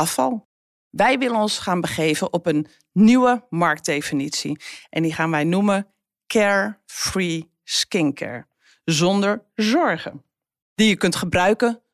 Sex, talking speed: female, 110 wpm